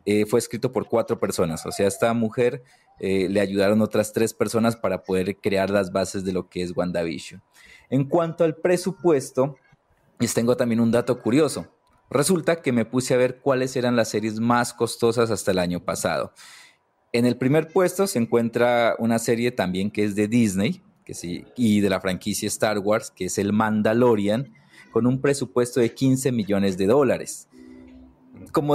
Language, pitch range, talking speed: Spanish, 105-130 Hz, 180 wpm